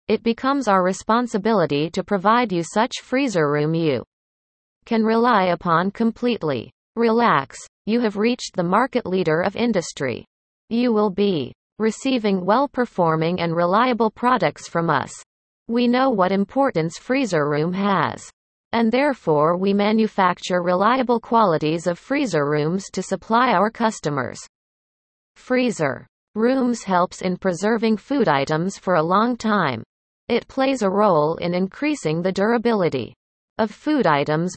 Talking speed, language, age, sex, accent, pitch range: 130 wpm, English, 40-59, female, American, 170-235 Hz